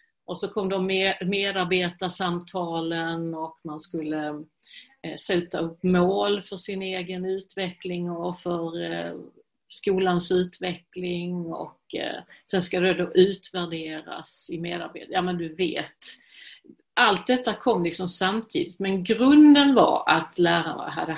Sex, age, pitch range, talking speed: female, 50-69, 170-195 Hz, 120 wpm